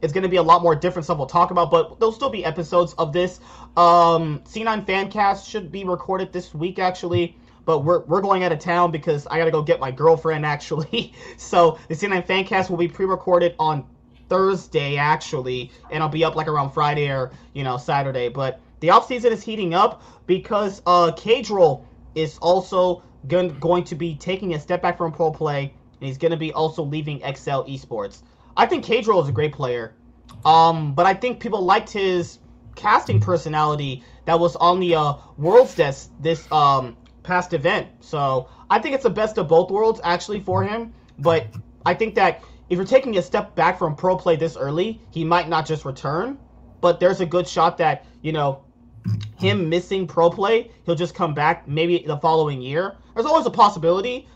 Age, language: 20-39, English